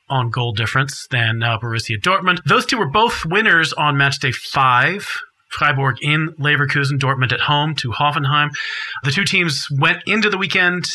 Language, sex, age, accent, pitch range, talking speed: English, male, 40-59, American, 125-160 Hz, 170 wpm